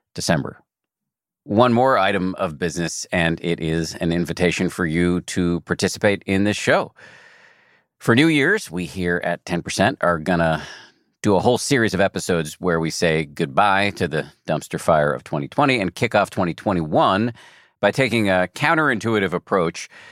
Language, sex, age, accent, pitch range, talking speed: English, male, 40-59, American, 80-105 Hz, 155 wpm